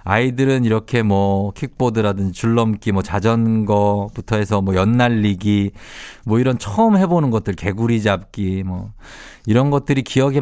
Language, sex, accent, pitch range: Korean, male, native, 100-145 Hz